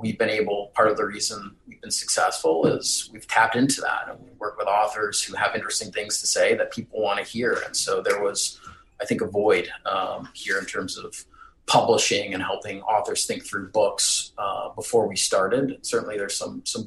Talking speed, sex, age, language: 210 wpm, male, 30-49, English